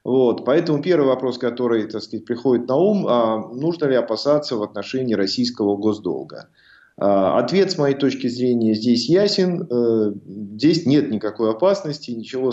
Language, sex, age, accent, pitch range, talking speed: Russian, male, 30-49, native, 110-150 Hz, 125 wpm